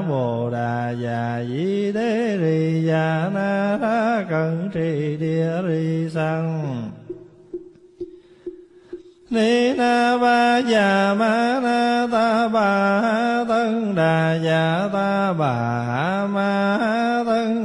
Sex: male